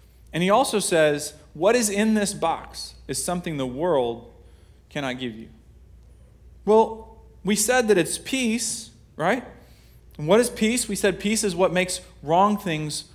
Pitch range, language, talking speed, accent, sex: 140-185 Hz, English, 160 wpm, American, male